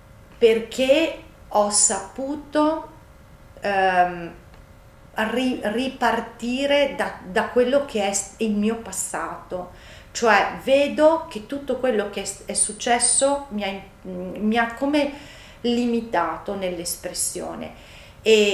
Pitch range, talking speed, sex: 185-230 Hz, 95 wpm, female